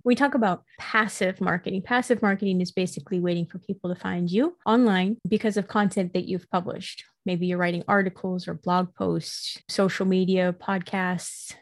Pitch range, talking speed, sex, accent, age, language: 180-210 Hz, 165 wpm, female, American, 20-39, English